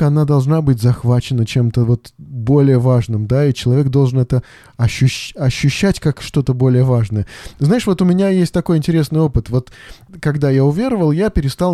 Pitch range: 120-150 Hz